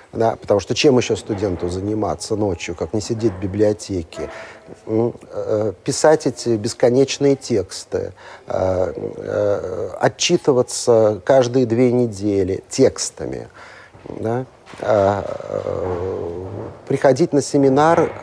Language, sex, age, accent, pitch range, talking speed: Russian, male, 50-69, native, 110-155 Hz, 85 wpm